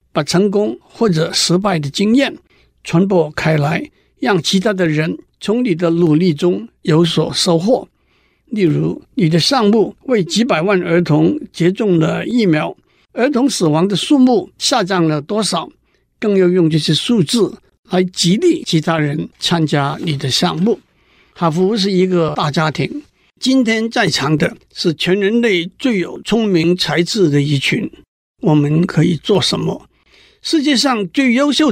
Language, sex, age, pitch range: Chinese, male, 60-79, 160-210 Hz